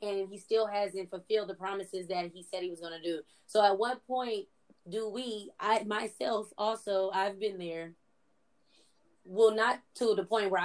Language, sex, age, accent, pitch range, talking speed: English, female, 20-39, American, 195-230 Hz, 180 wpm